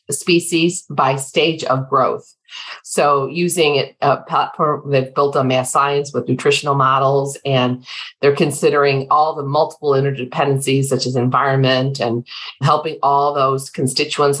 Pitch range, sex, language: 135-145 Hz, female, English